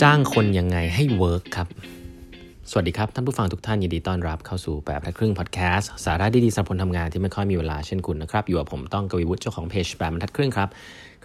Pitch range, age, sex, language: 90-115 Hz, 20-39, male, Thai